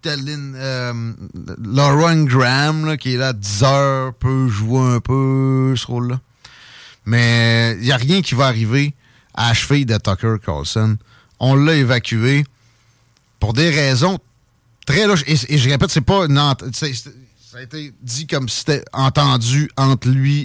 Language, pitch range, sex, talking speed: French, 115-140 Hz, male, 160 wpm